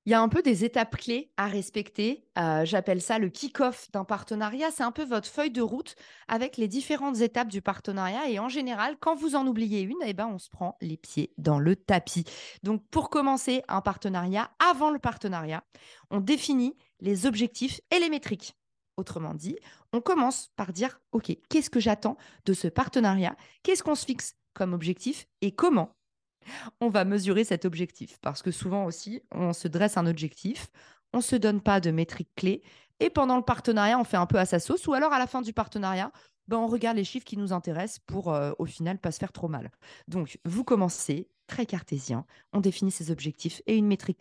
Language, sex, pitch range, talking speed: French, female, 175-245 Hz, 210 wpm